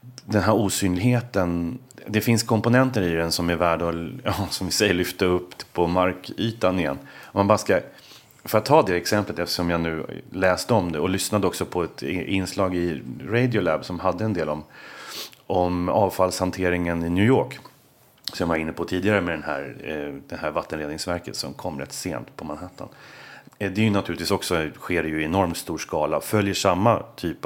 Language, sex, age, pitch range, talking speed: English, male, 30-49, 85-105 Hz, 190 wpm